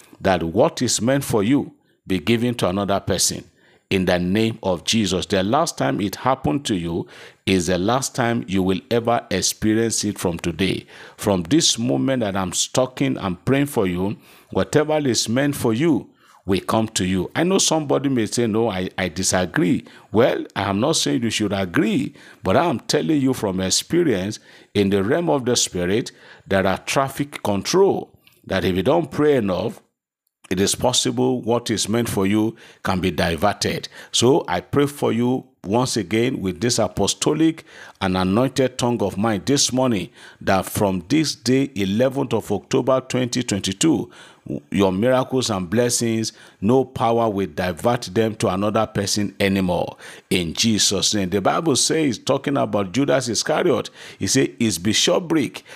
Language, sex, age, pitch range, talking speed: English, male, 50-69, 95-125 Hz, 170 wpm